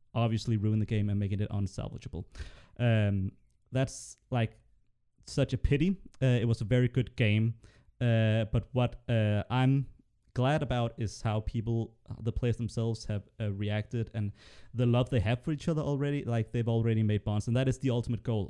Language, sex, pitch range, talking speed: English, male, 105-130 Hz, 185 wpm